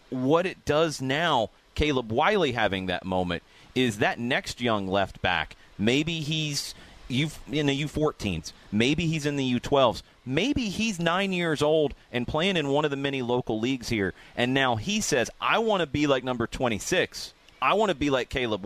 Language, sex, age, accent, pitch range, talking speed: English, male, 30-49, American, 120-180 Hz, 185 wpm